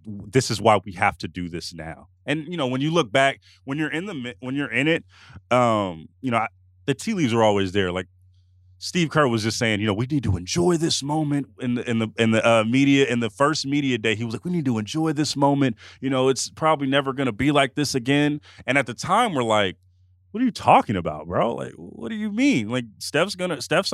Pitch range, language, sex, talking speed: 95-140 Hz, English, male, 255 wpm